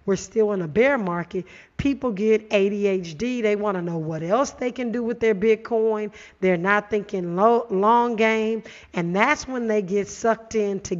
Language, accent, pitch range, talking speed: English, American, 190-225 Hz, 180 wpm